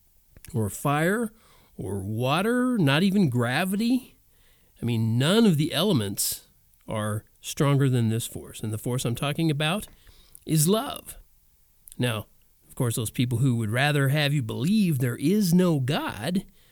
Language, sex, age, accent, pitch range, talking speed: English, male, 40-59, American, 115-165 Hz, 145 wpm